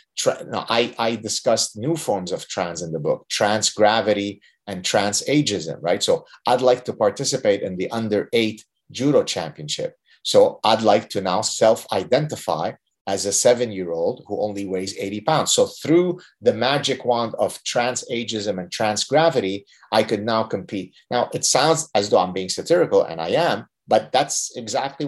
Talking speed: 165 wpm